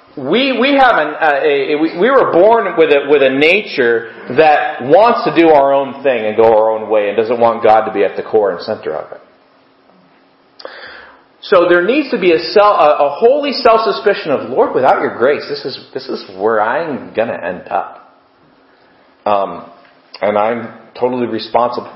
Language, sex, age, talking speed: English, male, 40-59, 195 wpm